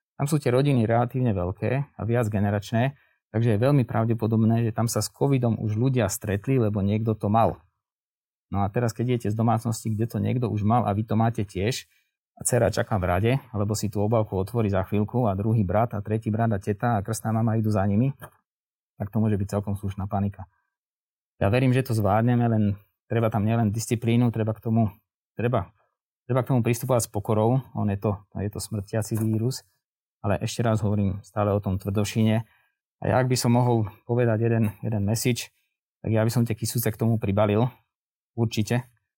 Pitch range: 105-120 Hz